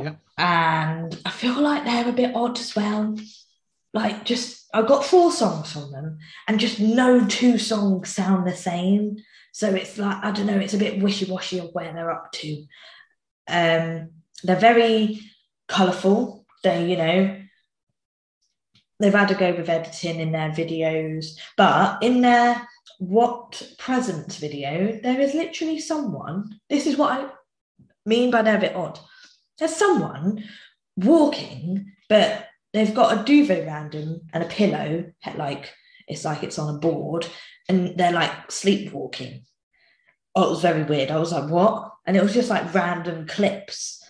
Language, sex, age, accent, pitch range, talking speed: English, female, 20-39, British, 165-230 Hz, 160 wpm